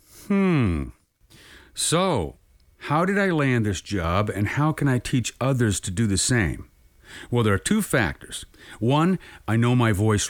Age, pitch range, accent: 50-69, 95-130 Hz, American